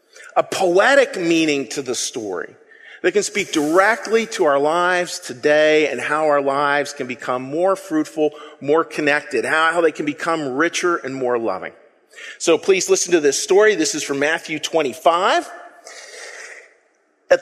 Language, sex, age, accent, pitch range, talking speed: English, male, 40-59, American, 150-205 Hz, 150 wpm